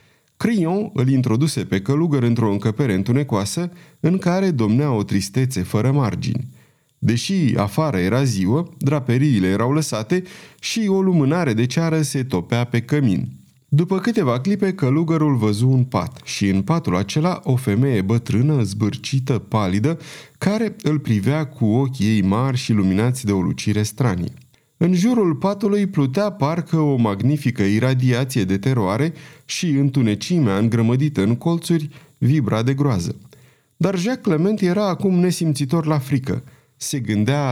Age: 30-49